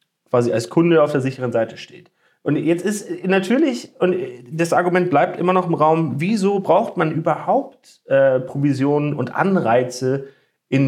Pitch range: 125-175 Hz